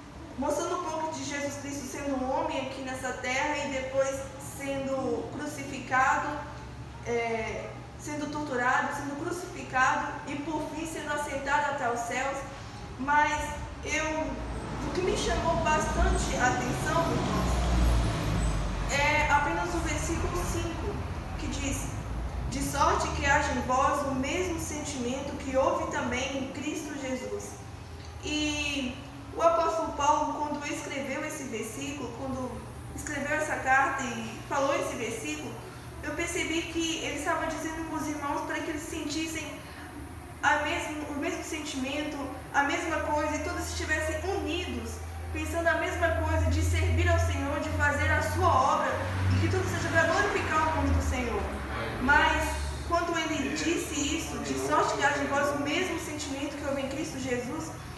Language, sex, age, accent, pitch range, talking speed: Portuguese, female, 20-39, Brazilian, 255-310 Hz, 145 wpm